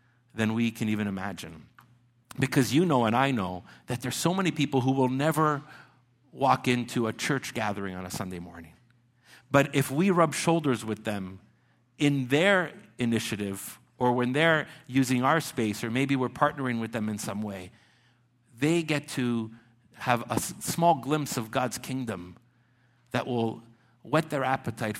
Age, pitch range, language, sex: 50-69, 115-155 Hz, English, male